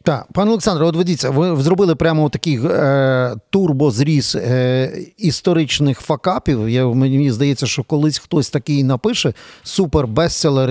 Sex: male